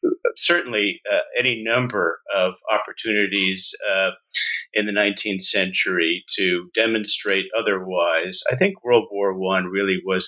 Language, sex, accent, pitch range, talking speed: English, male, American, 105-145 Hz, 125 wpm